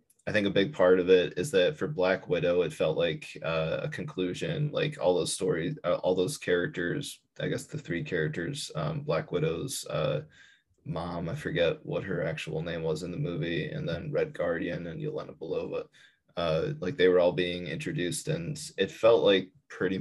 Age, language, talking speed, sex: 20-39, English, 195 wpm, male